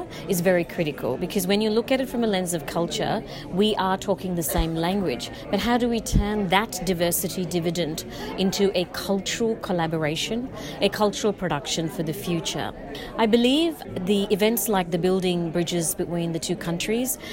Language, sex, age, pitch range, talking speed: Hindi, female, 30-49, 175-220 Hz, 175 wpm